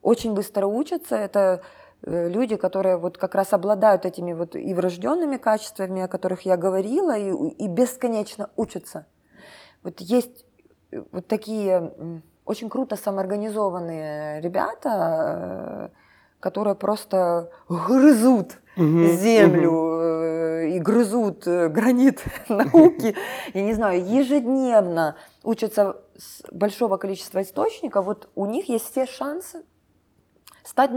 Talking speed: 105 wpm